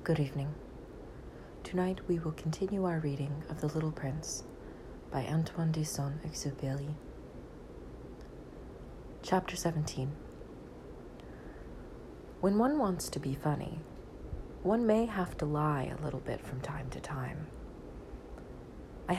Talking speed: 120 wpm